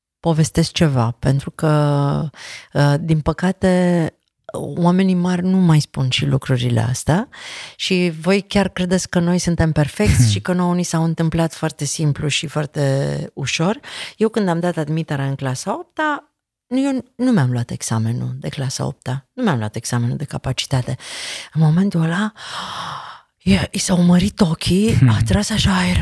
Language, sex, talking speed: Romanian, female, 150 wpm